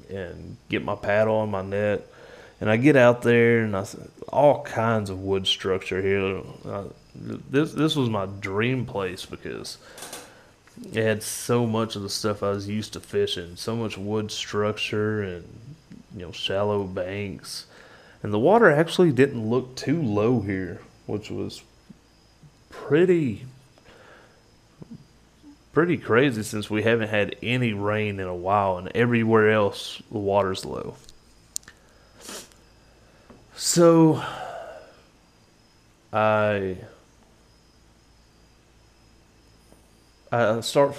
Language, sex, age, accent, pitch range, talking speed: English, male, 30-49, American, 100-120 Hz, 115 wpm